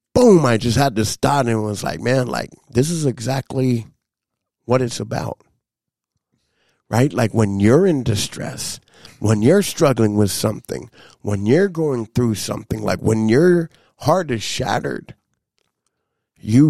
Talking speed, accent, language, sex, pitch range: 145 wpm, American, English, male, 110-140 Hz